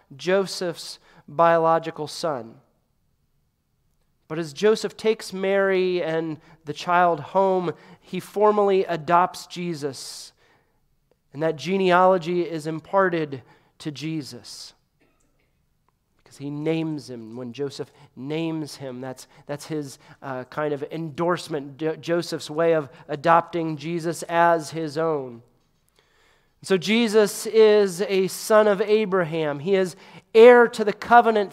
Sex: male